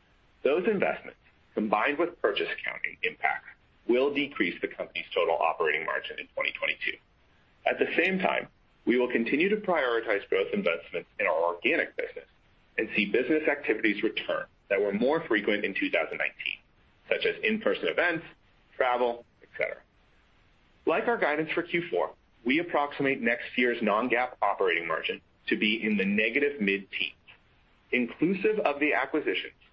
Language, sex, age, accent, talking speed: English, male, 30-49, American, 140 wpm